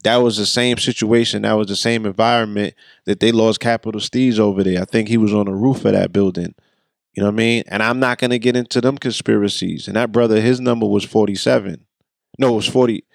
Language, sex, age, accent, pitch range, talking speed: English, male, 20-39, American, 105-125 Hz, 235 wpm